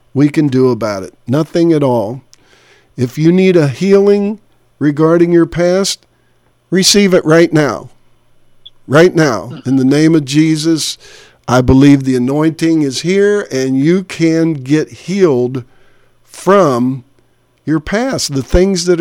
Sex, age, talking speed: male, 50-69, 140 wpm